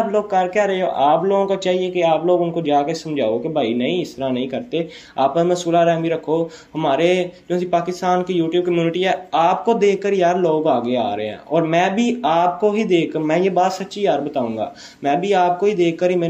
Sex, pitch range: male, 145-180 Hz